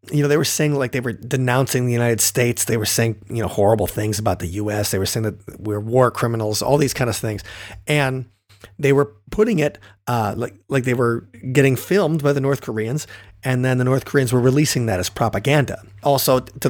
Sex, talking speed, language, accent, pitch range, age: male, 225 wpm, English, American, 110-140 Hz, 30-49